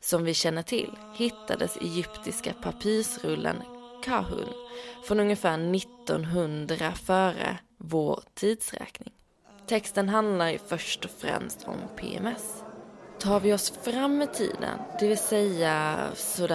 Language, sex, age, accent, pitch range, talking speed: English, female, 20-39, Swedish, 165-225 Hz, 110 wpm